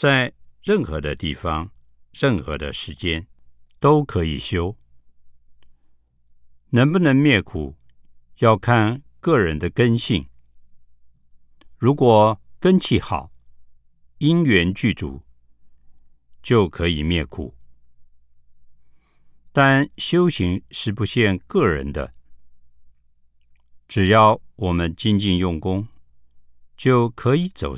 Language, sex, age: Chinese, male, 60-79